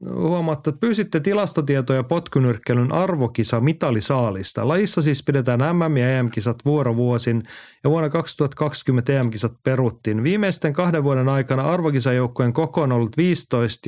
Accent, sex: native, male